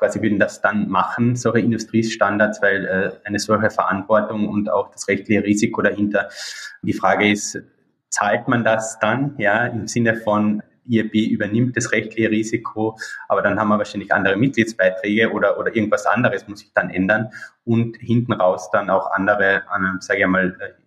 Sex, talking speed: male, 165 wpm